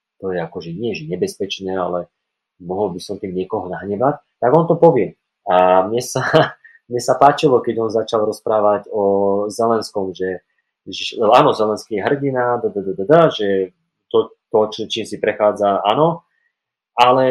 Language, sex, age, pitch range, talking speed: Slovak, male, 30-49, 100-150 Hz, 165 wpm